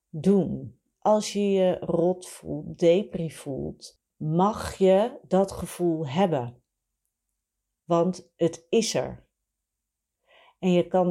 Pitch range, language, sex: 155-205 Hz, Dutch, female